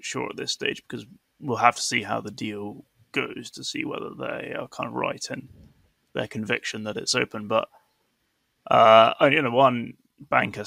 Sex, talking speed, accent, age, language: male, 190 wpm, British, 20-39, English